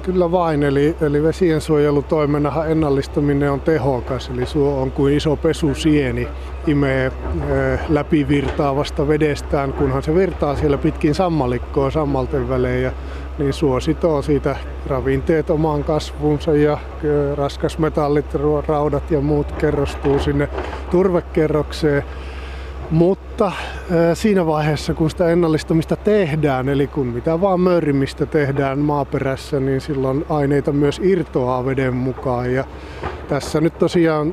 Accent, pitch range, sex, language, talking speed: native, 135-160 Hz, male, Finnish, 115 wpm